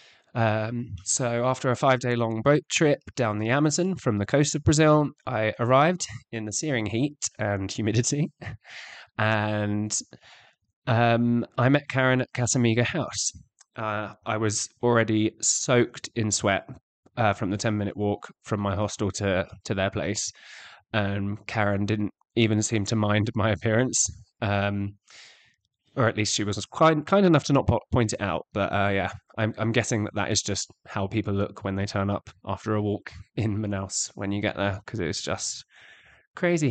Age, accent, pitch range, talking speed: 20-39, British, 105-130 Hz, 175 wpm